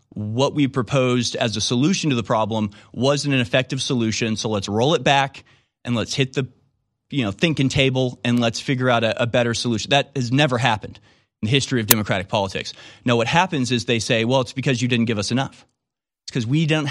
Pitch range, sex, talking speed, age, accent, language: 120-155 Hz, male, 220 wpm, 30-49, American, English